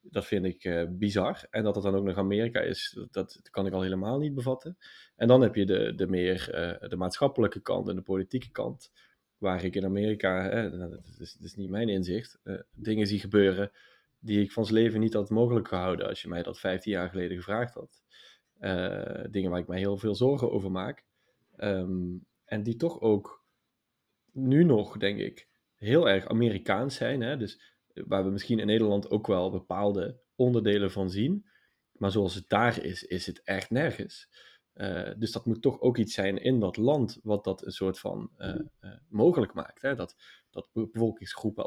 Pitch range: 95-115 Hz